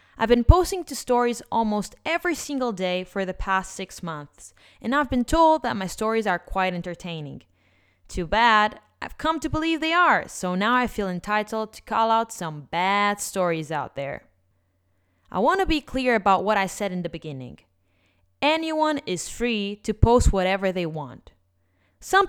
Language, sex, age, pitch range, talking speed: English, female, 20-39, 160-245 Hz, 180 wpm